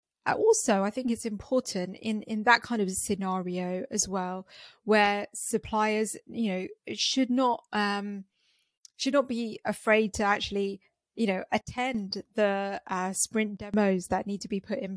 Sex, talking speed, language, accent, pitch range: female, 155 wpm, English, British, 190-230 Hz